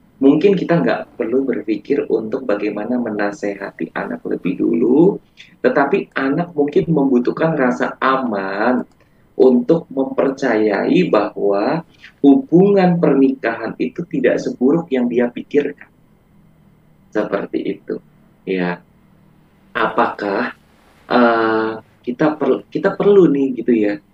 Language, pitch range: English, 110-145 Hz